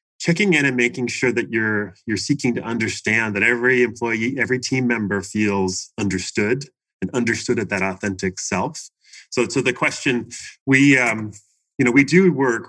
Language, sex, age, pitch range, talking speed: English, male, 30-49, 100-125 Hz, 175 wpm